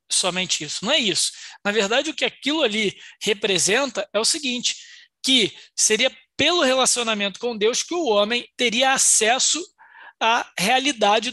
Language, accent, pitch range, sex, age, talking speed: Portuguese, Brazilian, 205-265 Hz, male, 20-39, 150 wpm